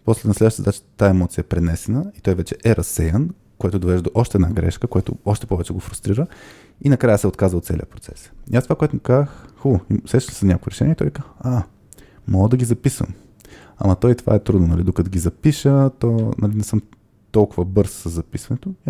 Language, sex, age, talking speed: Bulgarian, male, 20-39, 215 wpm